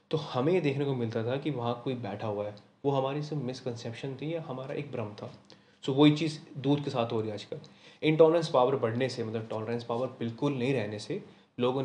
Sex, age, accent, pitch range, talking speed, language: male, 20-39, native, 115-140 Hz, 230 wpm, Hindi